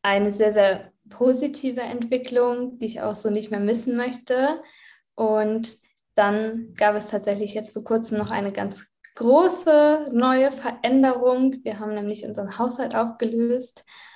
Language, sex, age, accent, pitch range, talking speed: German, female, 20-39, German, 200-245 Hz, 140 wpm